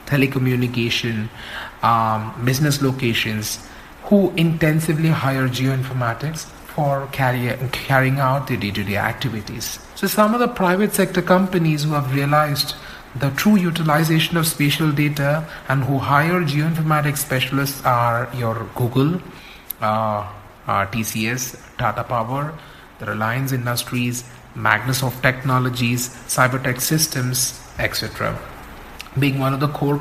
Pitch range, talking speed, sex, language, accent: 125-155 Hz, 115 wpm, male, Tamil, native